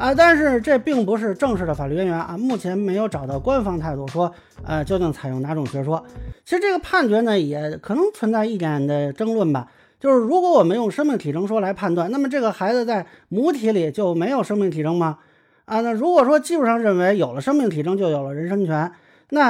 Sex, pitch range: male, 165-275 Hz